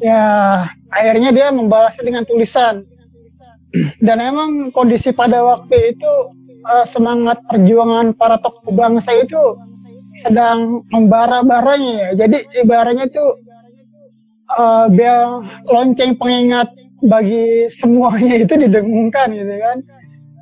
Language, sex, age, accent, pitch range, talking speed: Indonesian, male, 20-39, native, 220-250 Hz, 100 wpm